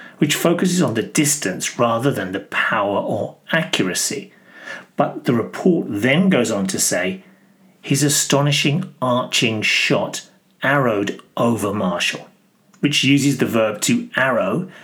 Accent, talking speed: British, 130 wpm